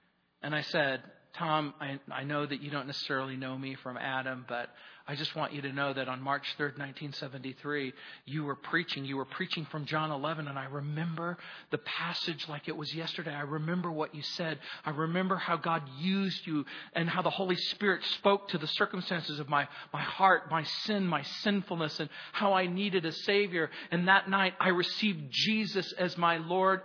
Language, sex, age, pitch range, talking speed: English, male, 40-59, 145-190 Hz, 195 wpm